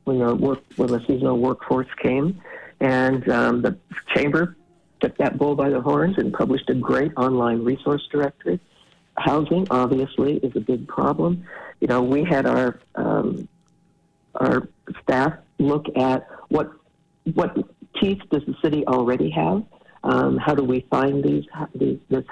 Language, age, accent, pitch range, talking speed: English, 60-79, American, 125-155 Hz, 155 wpm